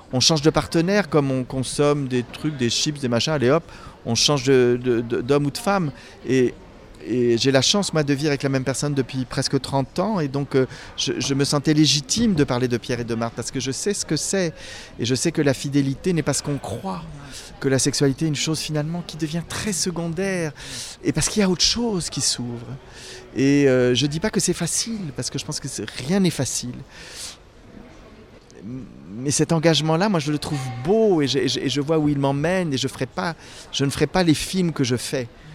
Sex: male